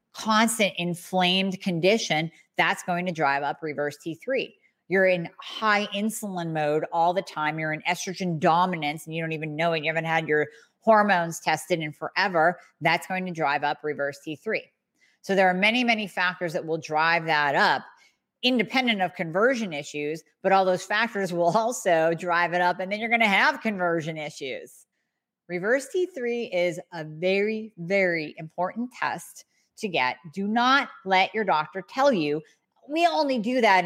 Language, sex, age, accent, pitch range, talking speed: English, female, 40-59, American, 160-205 Hz, 170 wpm